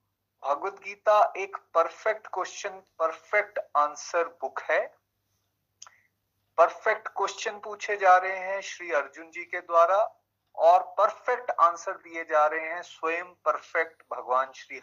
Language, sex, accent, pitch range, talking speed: Hindi, male, native, 130-190 Hz, 120 wpm